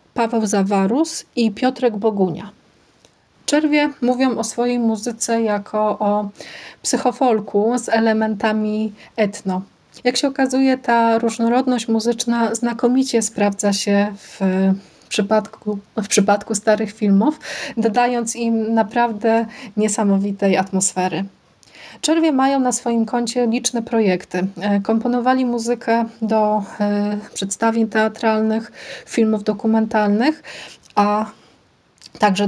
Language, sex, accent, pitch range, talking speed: Polish, female, native, 205-240 Hz, 95 wpm